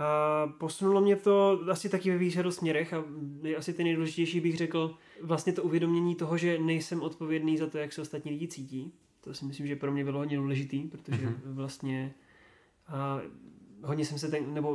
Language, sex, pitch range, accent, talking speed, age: Czech, male, 140-160 Hz, native, 185 wpm, 20-39